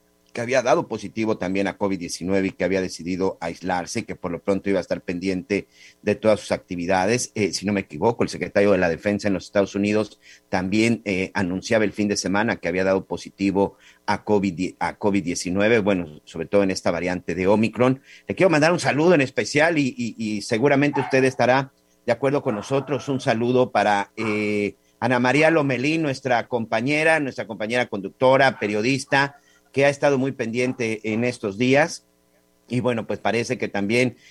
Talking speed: 185 wpm